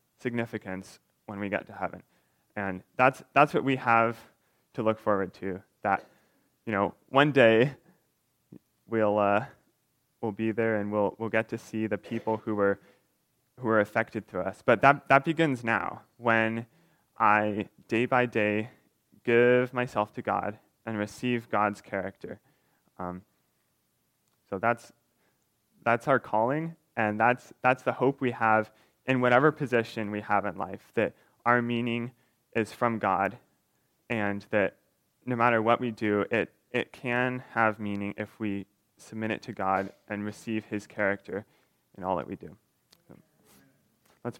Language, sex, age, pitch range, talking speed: English, male, 20-39, 105-125 Hz, 155 wpm